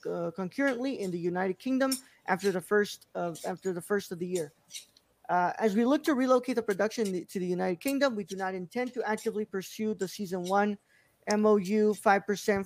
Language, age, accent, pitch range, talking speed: English, 20-39, American, 185-220 Hz, 195 wpm